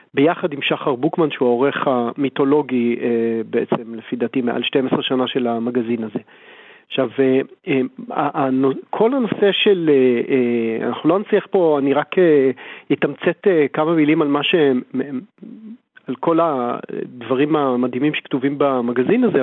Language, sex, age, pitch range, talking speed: Hebrew, male, 40-59, 135-180 Hz, 115 wpm